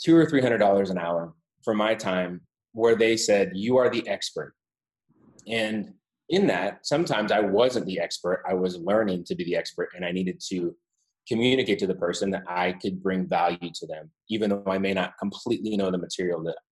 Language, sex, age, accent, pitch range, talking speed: English, male, 30-49, American, 90-110 Hz, 195 wpm